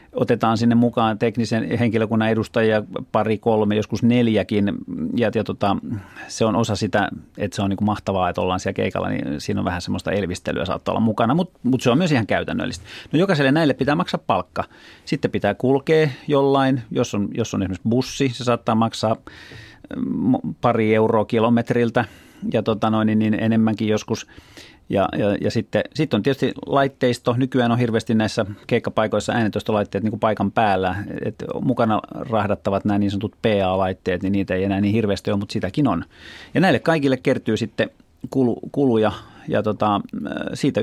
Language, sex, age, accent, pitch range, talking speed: Finnish, male, 30-49, native, 105-125 Hz, 170 wpm